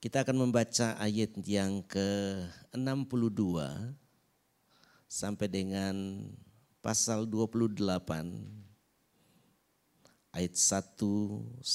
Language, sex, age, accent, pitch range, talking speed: Indonesian, male, 50-69, native, 100-130 Hz, 60 wpm